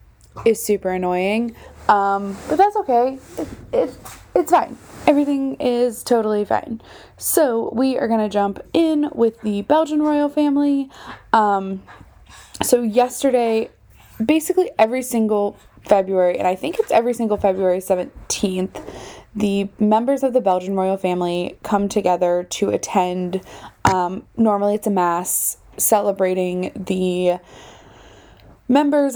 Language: English